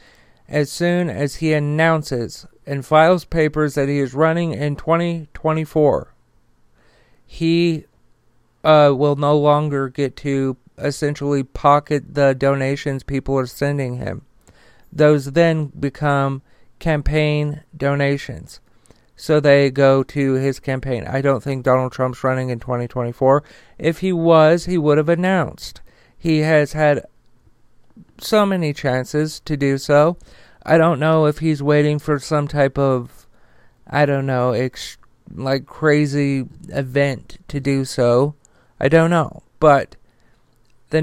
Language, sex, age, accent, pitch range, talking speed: English, male, 40-59, American, 130-150 Hz, 130 wpm